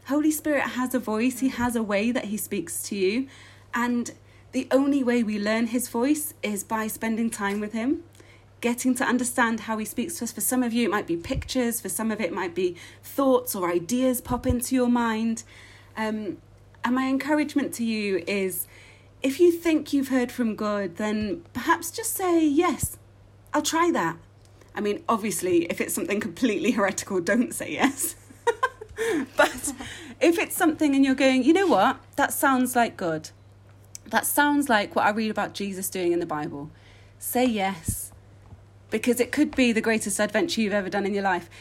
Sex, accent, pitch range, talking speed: female, British, 195-275 Hz, 190 wpm